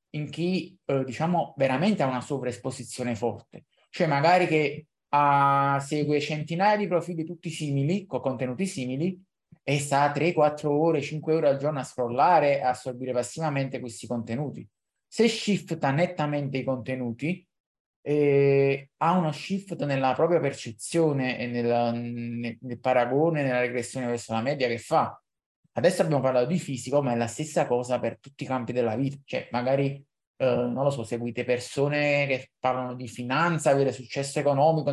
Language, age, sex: Italian, 20-39, male